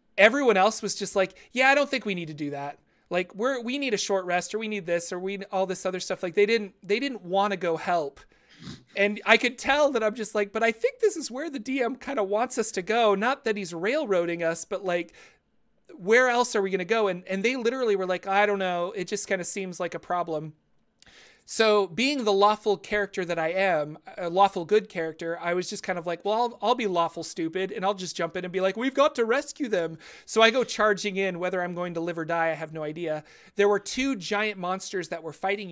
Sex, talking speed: male, 260 wpm